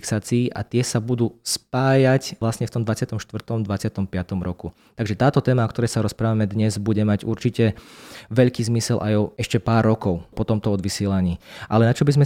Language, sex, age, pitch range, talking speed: Slovak, male, 20-39, 105-125 Hz, 175 wpm